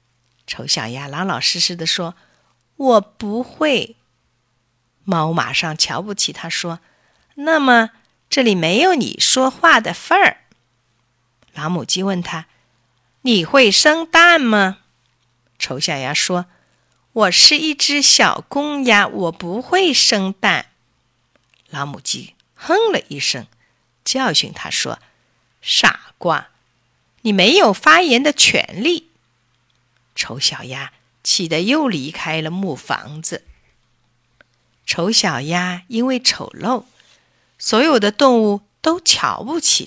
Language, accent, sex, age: Chinese, native, female, 50-69